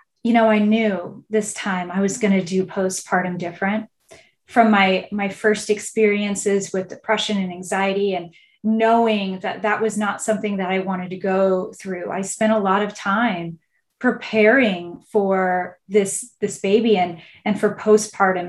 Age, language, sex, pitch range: 10-29, English, female, 195-230 Hz